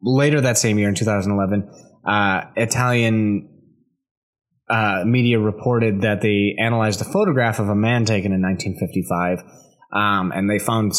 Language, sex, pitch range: English, male, 95-120 Hz